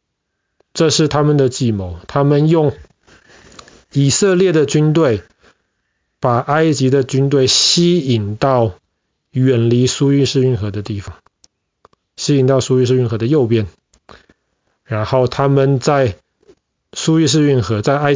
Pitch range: 110-140 Hz